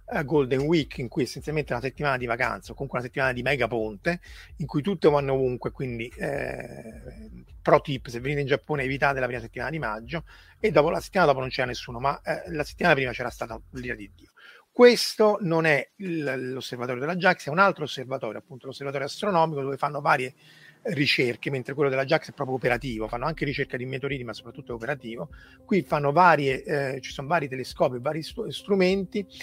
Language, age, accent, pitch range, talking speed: Italian, 30-49, native, 130-160 Hz, 205 wpm